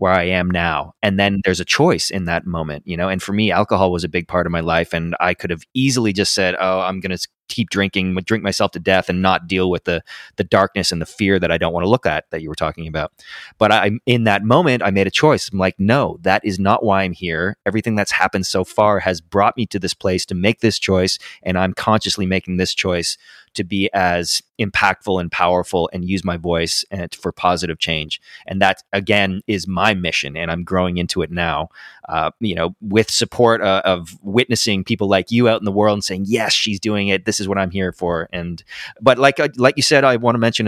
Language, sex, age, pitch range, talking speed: English, male, 20-39, 90-105 Hz, 245 wpm